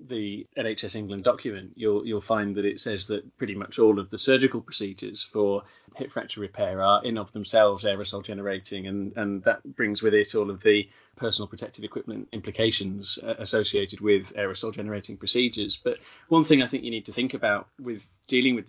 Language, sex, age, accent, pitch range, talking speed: English, male, 30-49, British, 105-120 Hz, 190 wpm